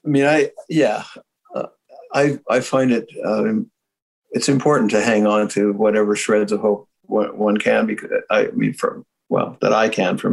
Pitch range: 100-140 Hz